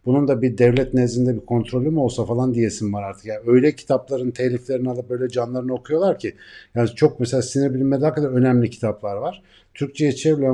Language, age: Turkish, 50-69